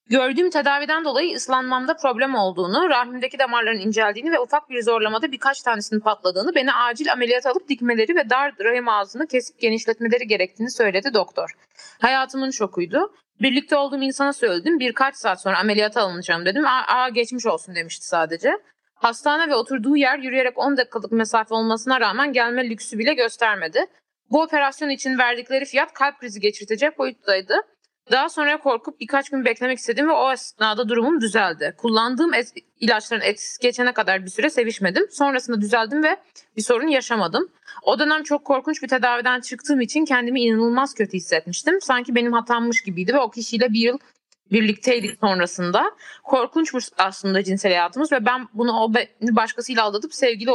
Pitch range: 220-275 Hz